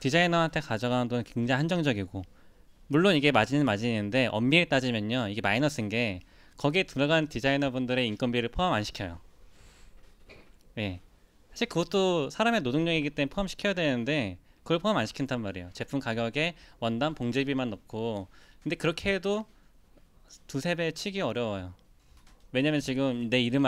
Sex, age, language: male, 20-39, Korean